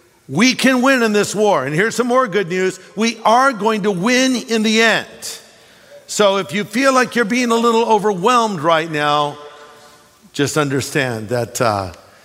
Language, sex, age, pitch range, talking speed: English, male, 50-69, 150-205 Hz, 175 wpm